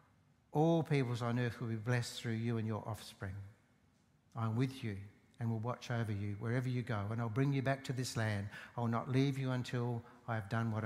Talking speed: 220 wpm